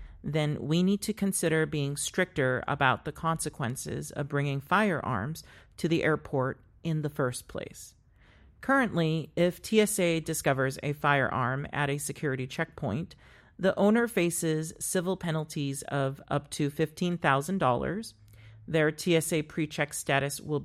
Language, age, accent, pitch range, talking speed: English, 40-59, American, 140-175 Hz, 130 wpm